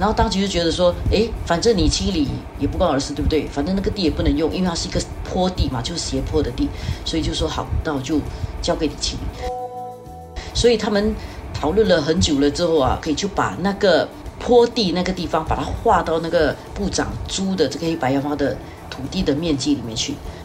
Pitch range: 145-190 Hz